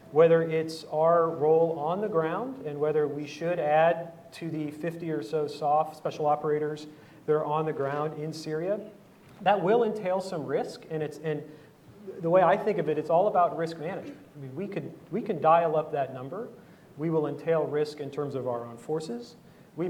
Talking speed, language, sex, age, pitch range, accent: 200 wpm, English, male, 40-59, 145-175 Hz, American